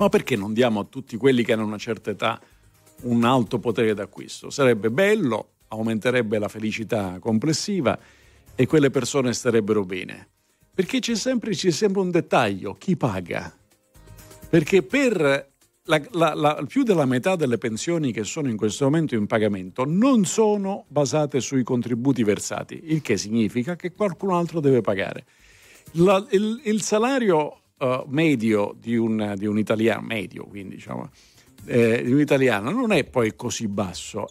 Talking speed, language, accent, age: 145 wpm, Italian, native, 50-69